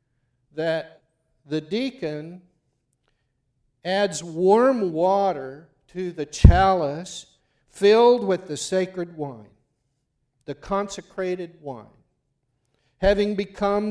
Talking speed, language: 80 wpm, English